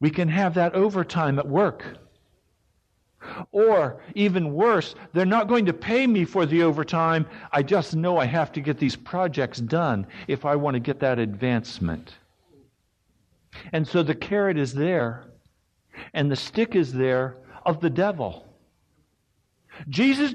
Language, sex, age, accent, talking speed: English, male, 60-79, American, 150 wpm